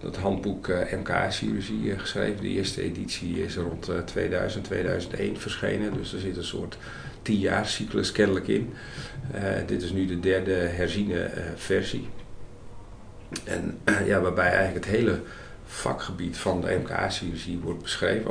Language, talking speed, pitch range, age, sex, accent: Dutch, 130 wpm, 90-110 Hz, 40-59, male, Dutch